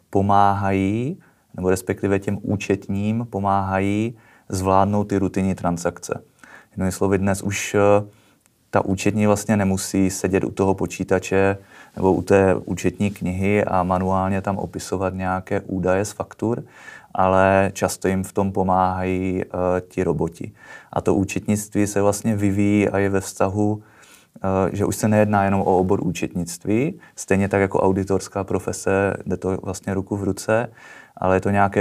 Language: Czech